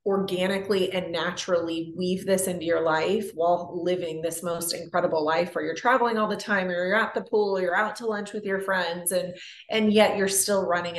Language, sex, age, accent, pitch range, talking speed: English, female, 30-49, American, 180-215 Hz, 215 wpm